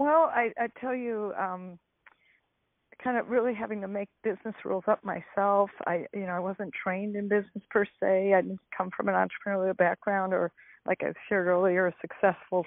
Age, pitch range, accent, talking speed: 50-69, 190-235 Hz, American, 190 wpm